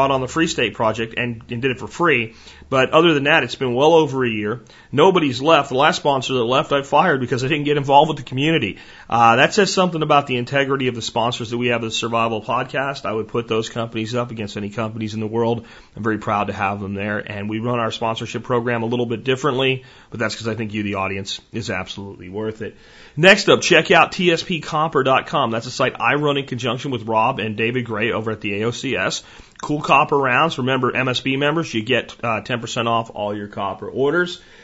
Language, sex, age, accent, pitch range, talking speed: English, male, 40-59, American, 115-145 Hz, 225 wpm